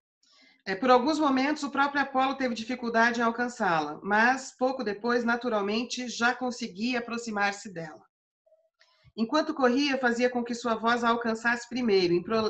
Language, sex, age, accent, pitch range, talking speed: Portuguese, female, 40-59, Brazilian, 190-250 Hz, 135 wpm